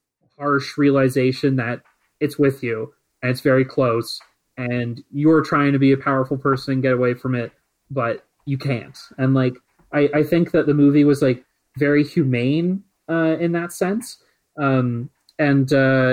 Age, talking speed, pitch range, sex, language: 30-49, 160 wpm, 130-155 Hz, male, English